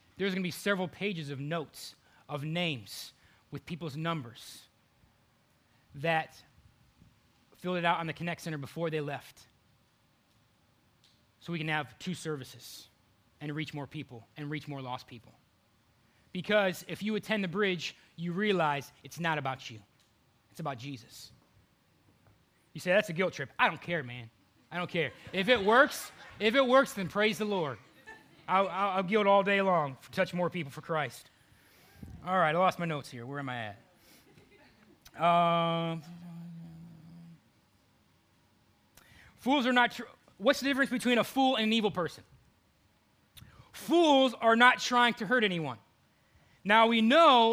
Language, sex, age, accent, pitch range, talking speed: English, male, 20-39, American, 130-210 Hz, 160 wpm